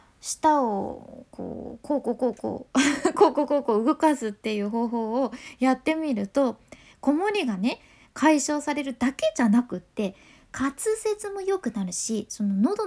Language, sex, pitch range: Japanese, female, 220-280 Hz